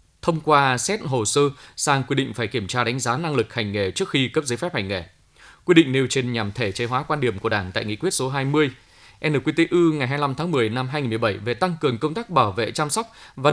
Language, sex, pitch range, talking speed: Vietnamese, male, 110-145 Hz, 255 wpm